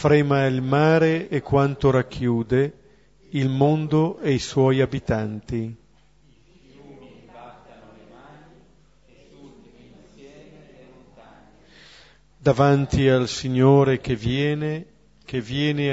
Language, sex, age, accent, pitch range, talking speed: Italian, male, 50-69, native, 125-140 Hz, 70 wpm